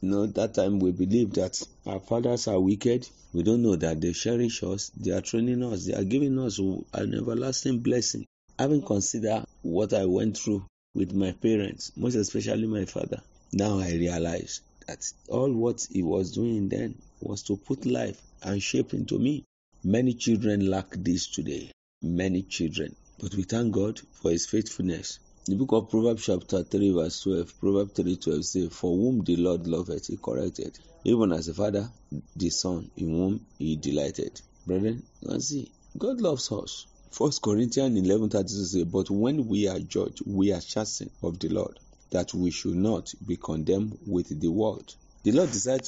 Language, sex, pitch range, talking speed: English, male, 90-115 Hz, 180 wpm